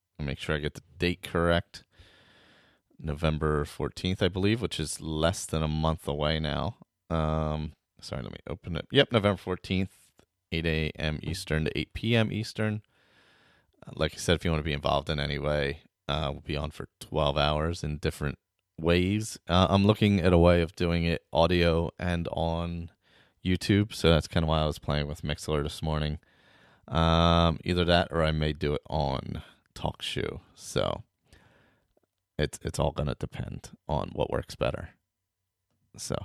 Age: 30-49